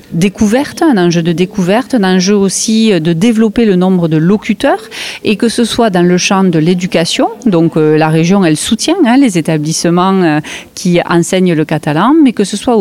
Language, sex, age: French, female, 40-59